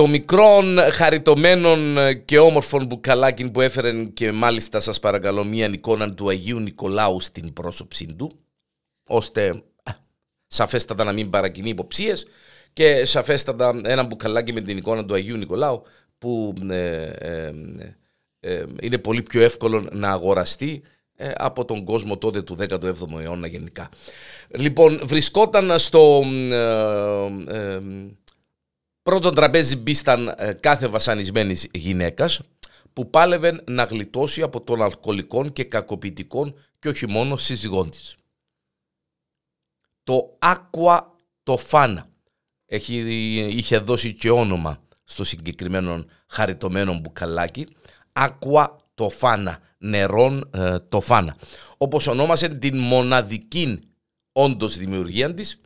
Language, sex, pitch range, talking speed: Greek, male, 100-140 Hz, 105 wpm